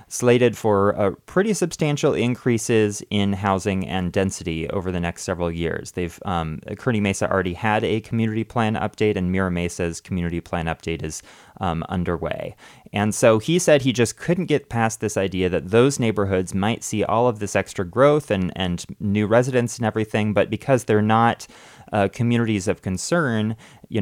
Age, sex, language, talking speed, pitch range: 30-49, male, English, 175 wpm, 90-115 Hz